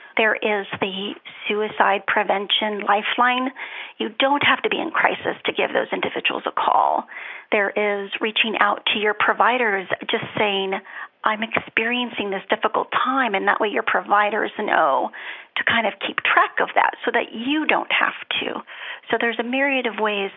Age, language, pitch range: 40-59, English, 205-250 Hz